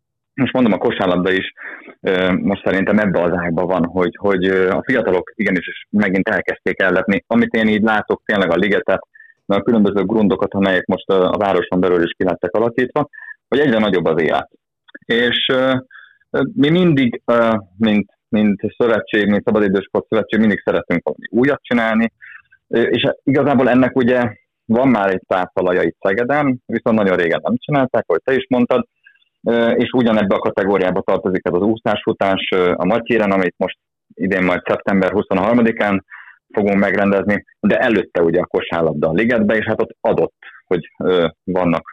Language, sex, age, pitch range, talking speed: Hungarian, male, 30-49, 95-115 Hz, 155 wpm